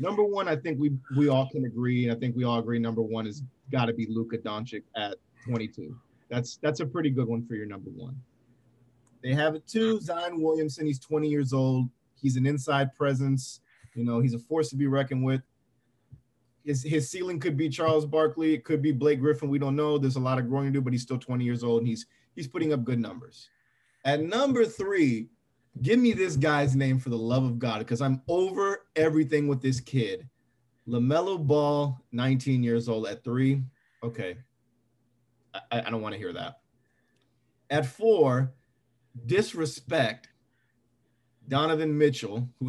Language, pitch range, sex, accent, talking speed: English, 120-150 Hz, male, American, 190 wpm